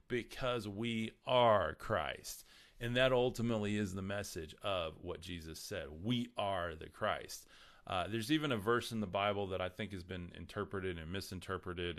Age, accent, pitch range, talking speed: 30-49, American, 85-105 Hz, 170 wpm